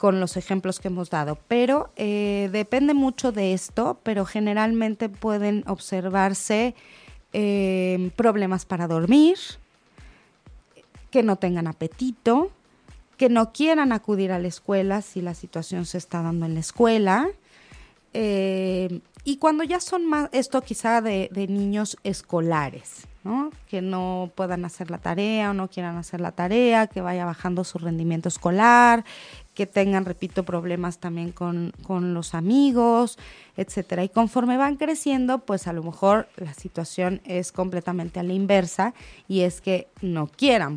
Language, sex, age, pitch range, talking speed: Spanish, female, 30-49, 175-225 Hz, 150 wpm